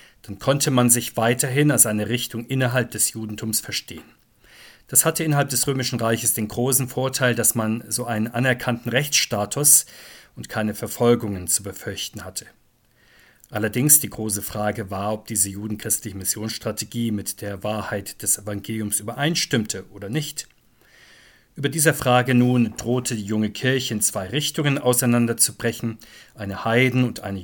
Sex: male